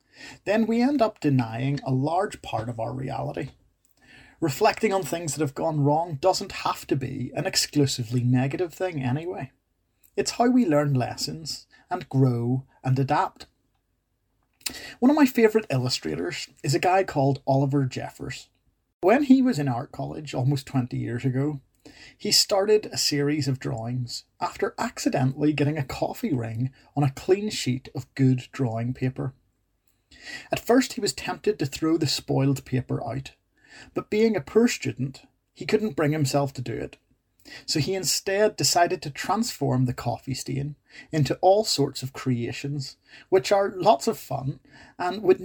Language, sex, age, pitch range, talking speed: English, male, 30-49, 130-180 Hz, 160 wpm